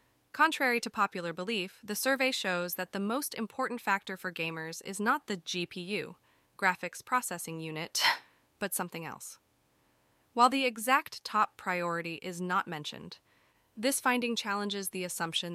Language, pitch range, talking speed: English, 180-225 Hz, 145 wpm